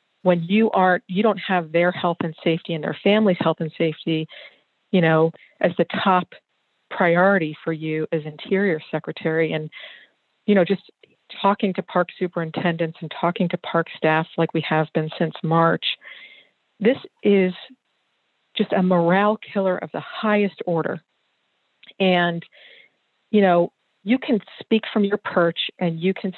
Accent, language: American, English